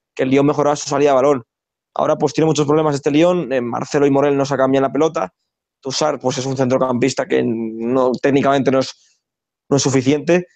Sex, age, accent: male, 20-39, Spanish